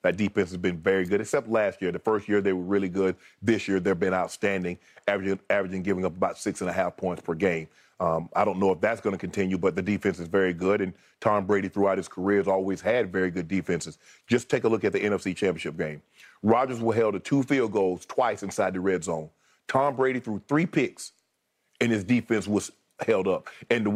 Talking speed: 235 wpm